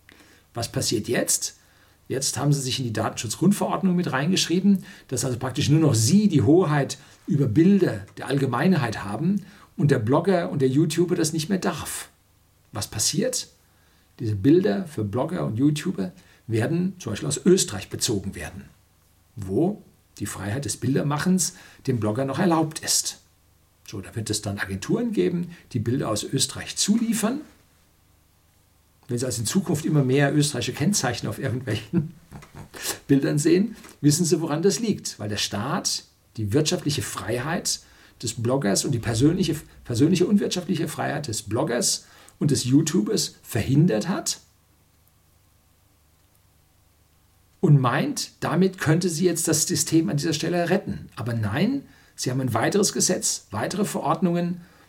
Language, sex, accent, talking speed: German, male, German, 145 wpm